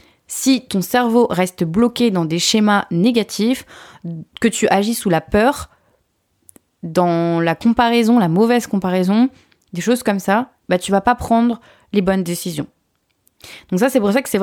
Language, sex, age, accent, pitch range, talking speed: French, female, 20-39, French, 175-225 Hz, 165 wpm